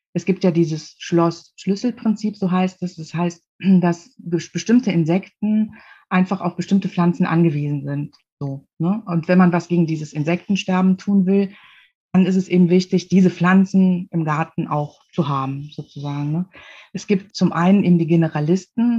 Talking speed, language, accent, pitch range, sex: 155 wpm, German, German, 165-195 Hz, female